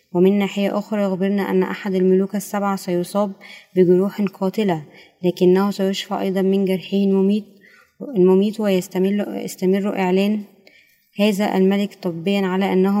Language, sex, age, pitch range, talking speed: Arabic, female, 20-39, 185-200 Hz, 110 wpm